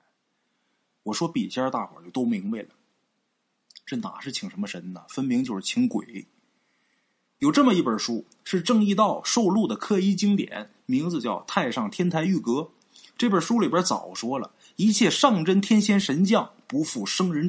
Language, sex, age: Chinese, male, 20-39